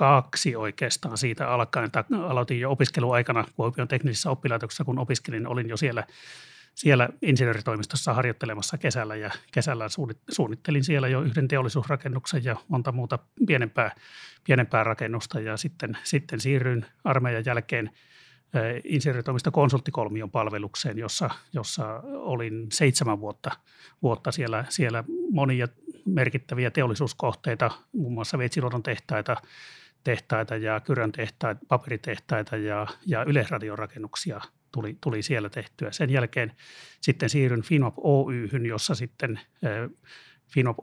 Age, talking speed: 30-49, 115 wpm